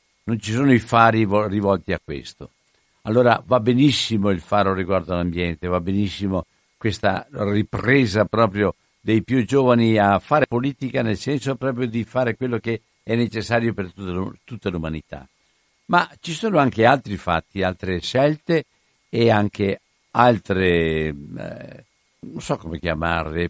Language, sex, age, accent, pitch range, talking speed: Italian, male, 60-79, native, 95-125 Hz, 135 wpm